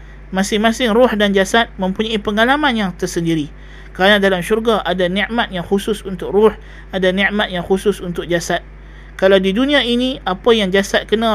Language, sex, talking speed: Malay, male, 165 wpm